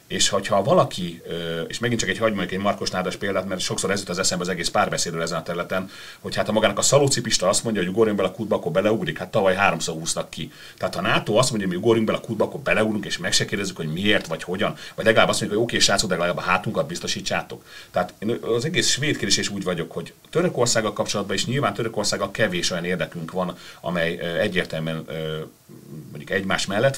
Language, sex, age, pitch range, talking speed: Hungarian, male, 40-59, 90-120 Hz, 225 wpm